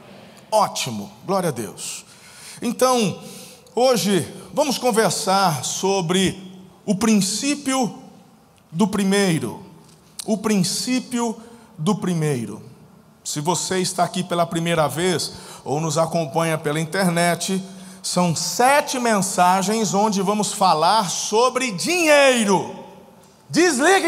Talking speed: 95 wpm